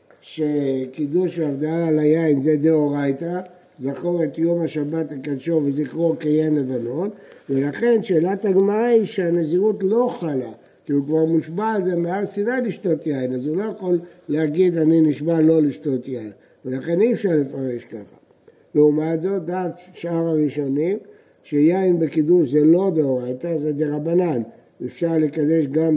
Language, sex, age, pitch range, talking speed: Hebrew, male, 60-79, 150-200 Hz, 145 wpm